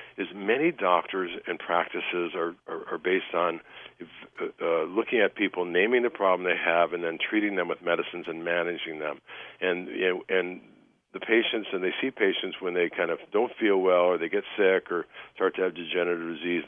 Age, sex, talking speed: 50-69, male, 190 wpm